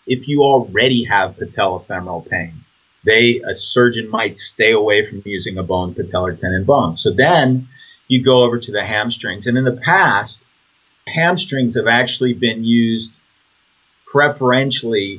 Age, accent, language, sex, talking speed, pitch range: 30-49, American, English, male, 145 wpm, 110-140 Hz